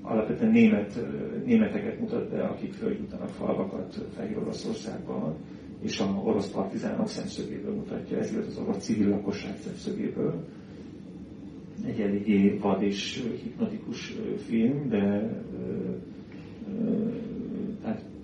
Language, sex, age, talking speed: Hungarian, male, 40-59, 105 wpm